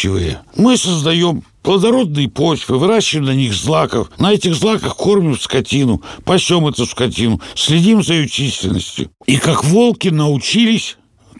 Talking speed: 125 wpm